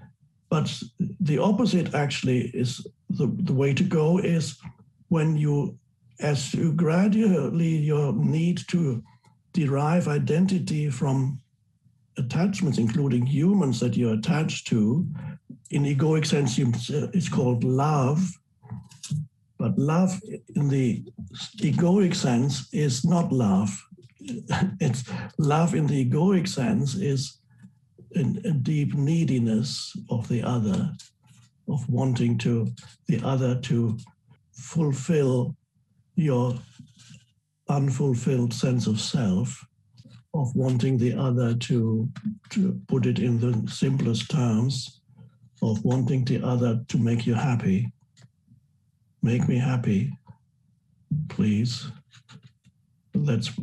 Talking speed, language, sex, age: 105 wpm, English, male, 60-79